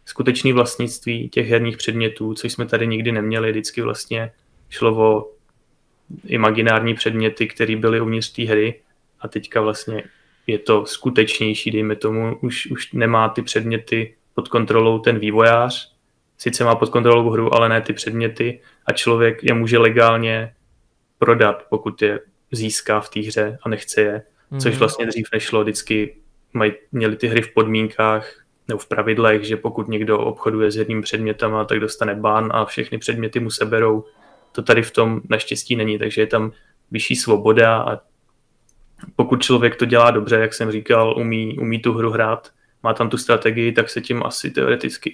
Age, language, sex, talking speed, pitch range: 20-39, Slovak, male, 165 wpm, 110-120 Hz